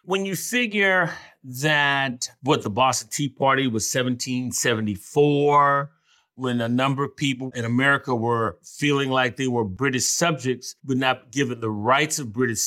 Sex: male